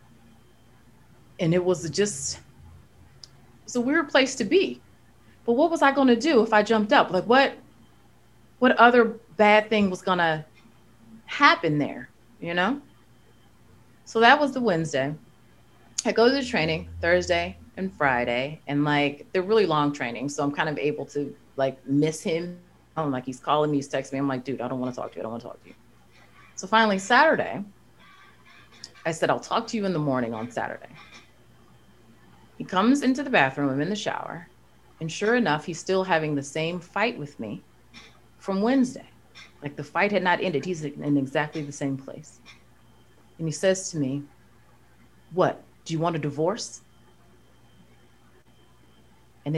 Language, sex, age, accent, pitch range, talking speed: English, female, 30-49, American, 135-210 Hz, 175 wpm